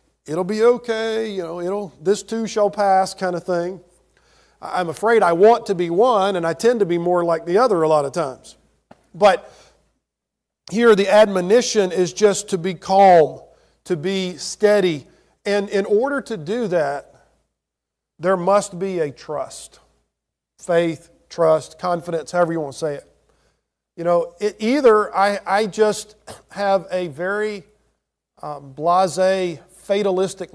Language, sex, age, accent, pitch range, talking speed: English, male, 50-69, American, 170-205 Hz, 155 wpm